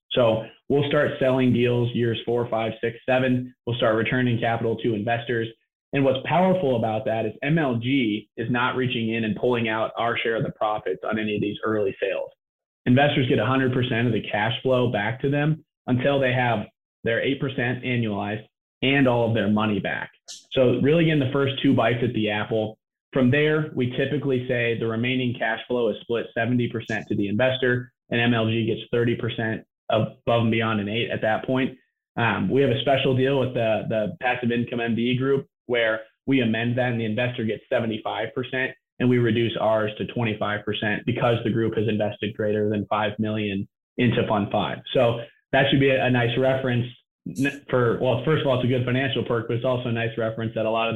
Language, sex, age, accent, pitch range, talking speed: English, male, 30-49, American, 110-130 Hz, 195 wpm